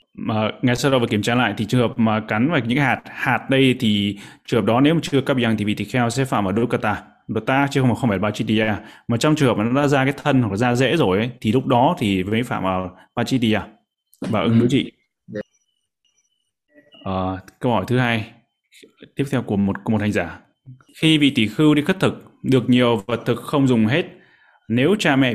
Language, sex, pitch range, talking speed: Vietnamese, male, 110-135 Hz, 240 wpm